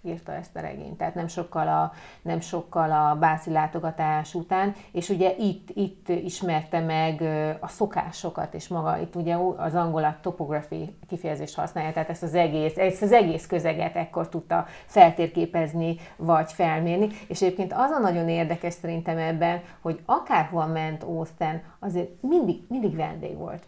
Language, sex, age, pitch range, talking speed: Hungarian, female, 30-49, 165-195 Hz, 155 wpm